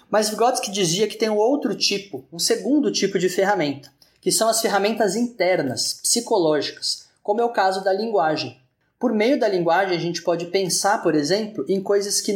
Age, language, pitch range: 20-39, Portuguese, 165-210 Hz